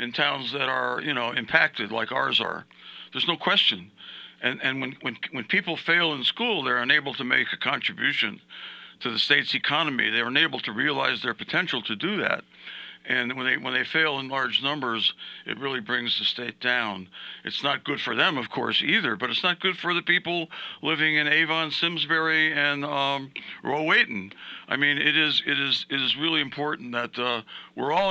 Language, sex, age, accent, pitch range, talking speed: English, male, 60-79, American, 130-160 Hz, 195 wpm